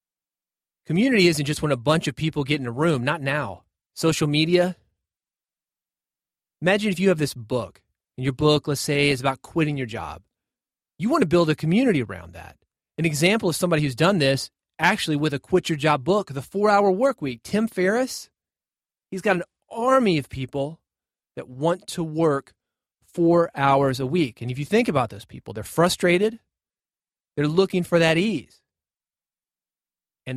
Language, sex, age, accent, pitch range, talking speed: English, male, 30-49, American, 130-180 Hz, 175 wpm